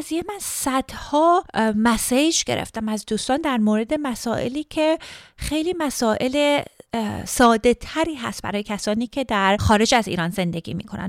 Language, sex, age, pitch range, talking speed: Persian, female, 30-49, 210-300 Hz, 140 wpm